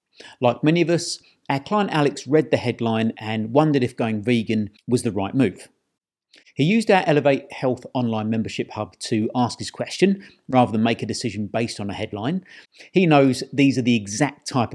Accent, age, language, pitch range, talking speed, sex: British, 50-69, English, 115-155 Hz, 190 wpm, male